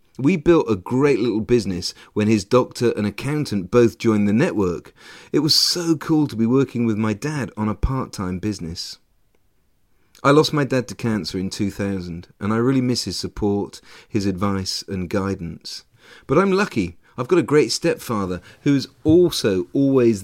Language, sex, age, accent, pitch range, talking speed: English, male, 40-59, British, 105-145 Hz, 175 wpm